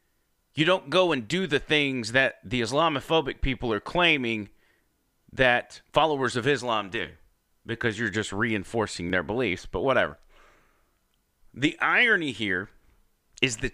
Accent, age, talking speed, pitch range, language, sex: American, 30-49, 135 wpm, 105-155 Hz, English, male